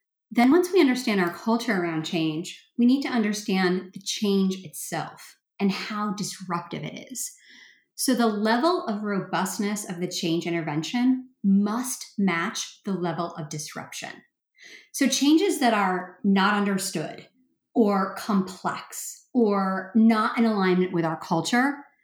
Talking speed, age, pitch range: 135 wpm, 30-49, 180-240 Hz